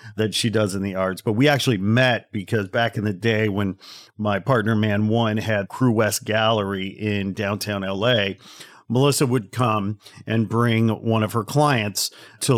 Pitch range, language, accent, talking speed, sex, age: 105-120 Hz, English, American, 175 wpm, male, 50-69